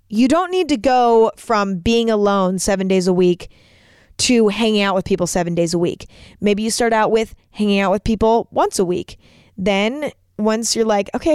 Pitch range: 185-235 Hz